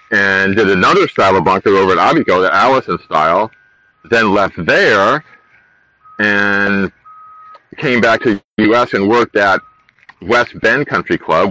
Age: 40-59